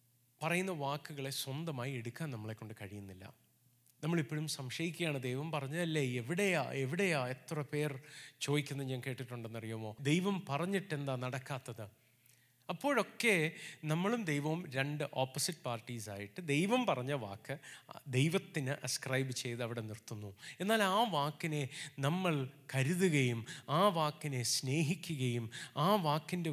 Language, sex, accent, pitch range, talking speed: Malayalam, male, native, 125-165 Hz, 105 wpm